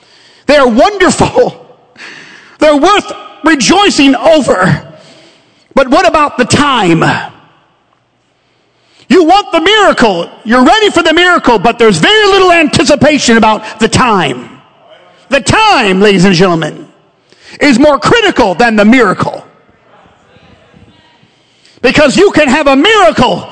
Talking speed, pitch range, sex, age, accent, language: 115 wpm, 255-330 Hz, male, 50-69, American, English